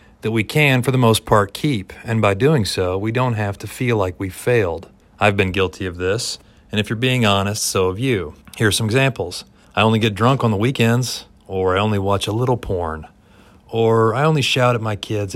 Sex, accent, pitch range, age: male, American, 100-120 Hz, 40-59